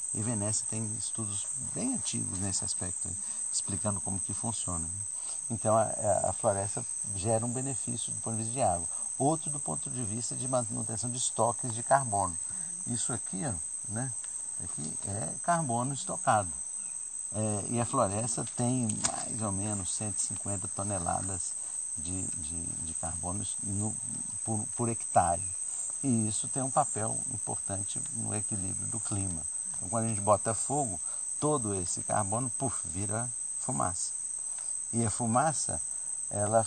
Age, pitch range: 50-69, 100-125 Hz